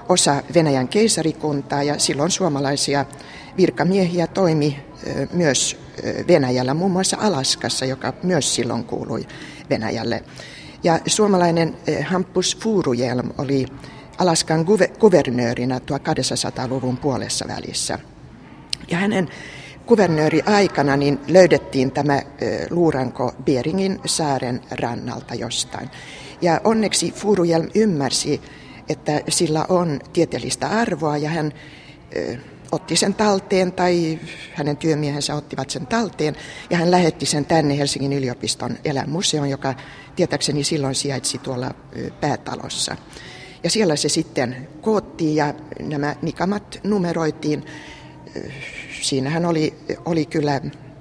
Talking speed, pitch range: 105 wpm, 135-170 Hz